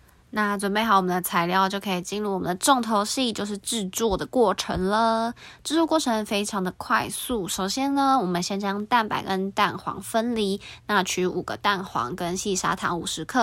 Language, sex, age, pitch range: Chinese, female, 20-39, 180-210 Hz